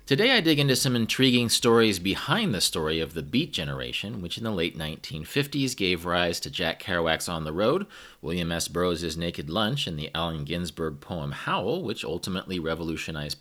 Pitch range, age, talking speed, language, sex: 85-125 Hz, 30-49, 185 wpm, English, male